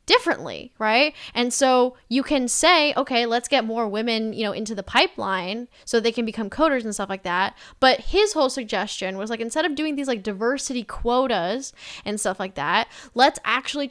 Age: 10-29